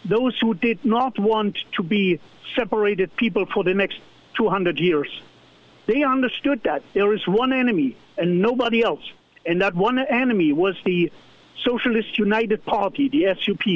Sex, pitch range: male, 200-250 Hz